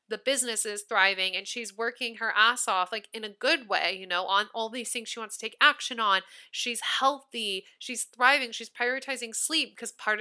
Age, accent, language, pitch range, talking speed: 20-39, American, English, 210-255 Hz, 210 wpm